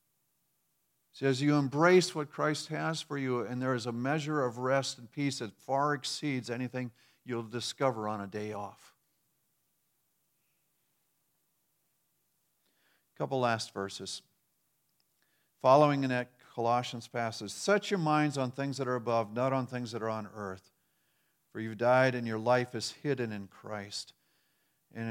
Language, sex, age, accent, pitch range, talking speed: English, male, 50-69, American, 110-135 Hz, 150 wpm